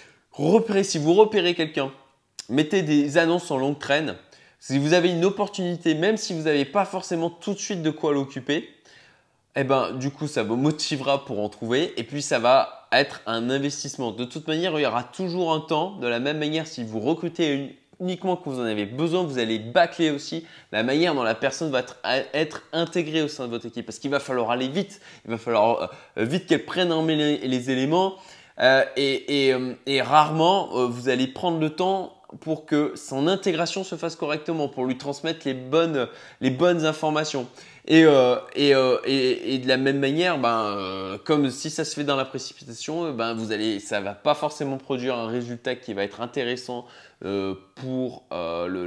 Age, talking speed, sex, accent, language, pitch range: 20-39, 200 wpm, male, French, French, 125-165 Hz